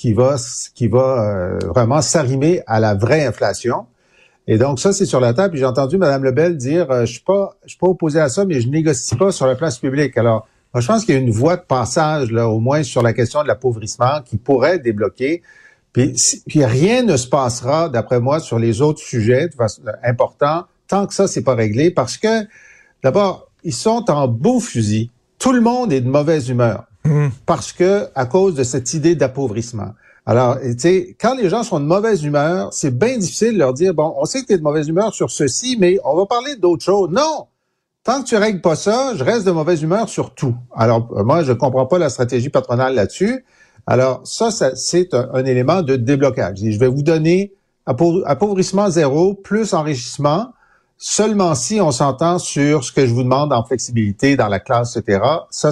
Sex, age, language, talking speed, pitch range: male, 50-69, French, 210 wpm, 125-185 Hz